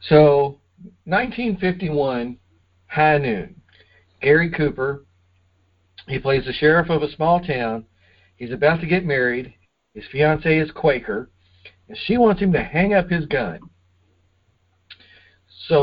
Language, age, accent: English, 50-69, American